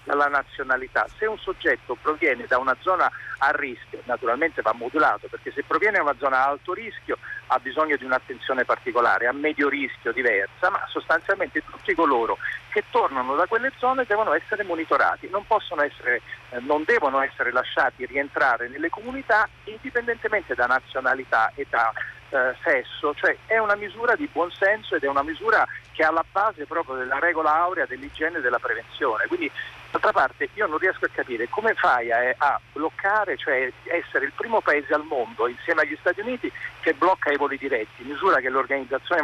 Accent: native